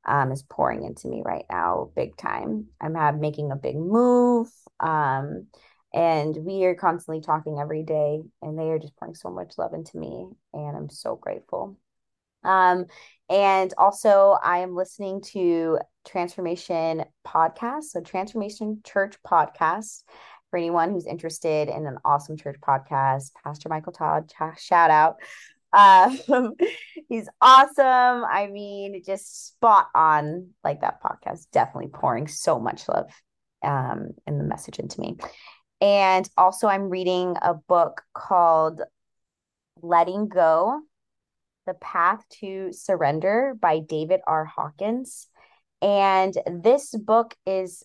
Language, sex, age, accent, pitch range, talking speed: English, female, 20-39, American, 160-200 Hz, 135 wpm